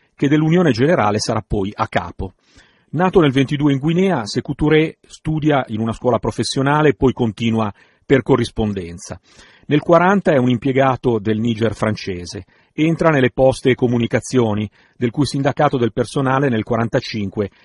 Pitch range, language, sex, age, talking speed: 115-145 Hz, Italian, male, 40-59, 145 wpm